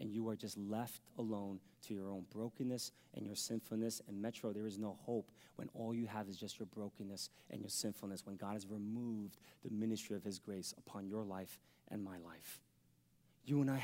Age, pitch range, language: 30-49, 115-185 Hz, English